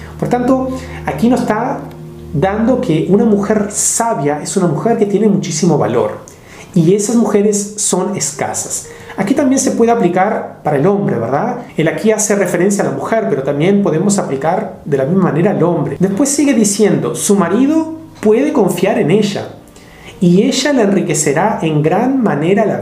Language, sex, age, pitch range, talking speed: Spanish, male, 40-59, 155-220 Hz, 170 wpm